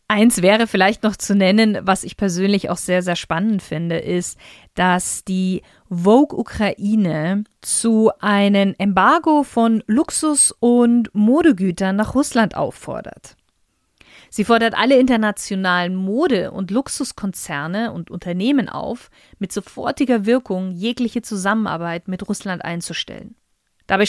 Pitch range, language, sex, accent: 185-230 Hz, German, female, German